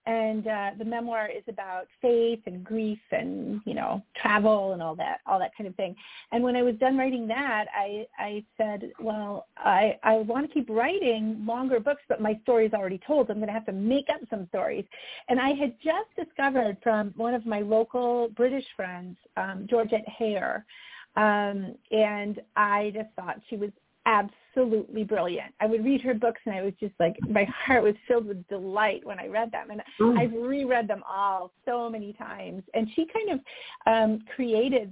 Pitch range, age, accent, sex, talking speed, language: 205-245 Hz, 40-59, American, female, 195 wpm, English